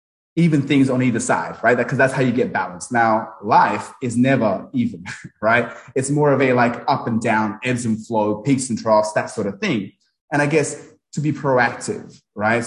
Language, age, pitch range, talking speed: English, 20-39, 110-135 Hz, 205 wpm